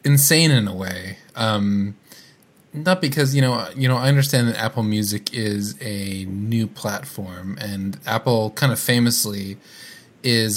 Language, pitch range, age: English, 100-120 Hz, 20-39